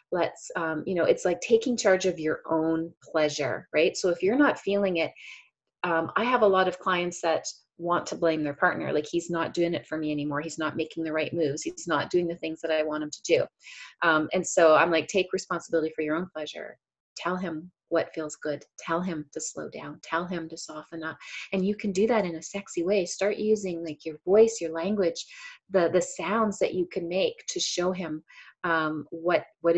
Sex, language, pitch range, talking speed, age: female, English, 160-205 Hz, 225 wpm, 30-49